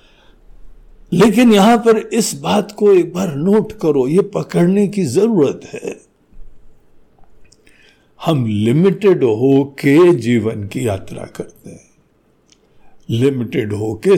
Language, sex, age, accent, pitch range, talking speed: Hindi, male, 60-79, native, 155-215 Hz, 105 wpm